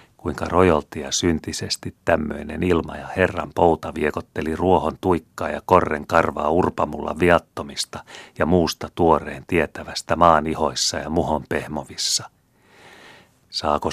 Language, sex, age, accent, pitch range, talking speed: Finnish, male, 40-59, native, 75-85 Hz, 110 wpm